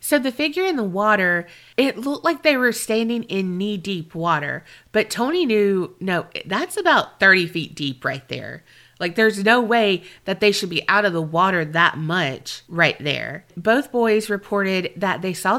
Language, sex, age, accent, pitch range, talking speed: English, female, 30-49, American, 170-230 Hz, 190 wpm